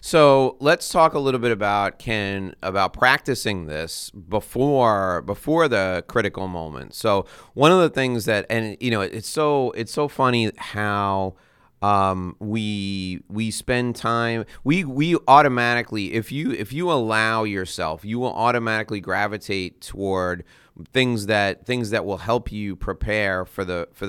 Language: English